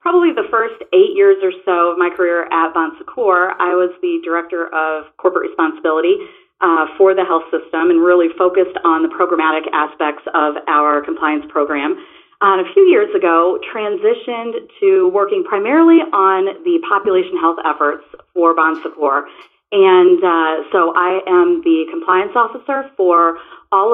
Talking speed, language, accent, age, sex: 160 wpm, English, American, 40-59, female